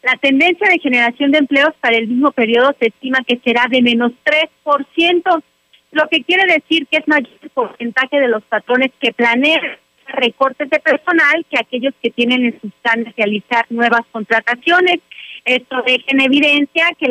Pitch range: 230-280 Hz